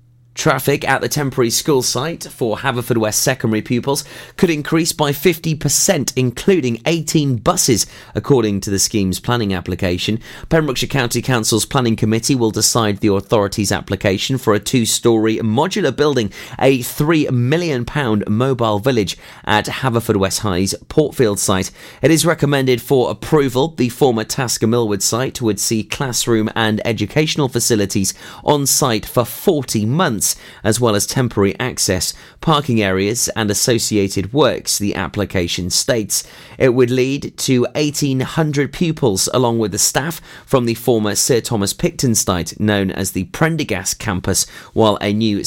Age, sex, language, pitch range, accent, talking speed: 30-49, male, English, 105-135 Hz, British, 145 wpm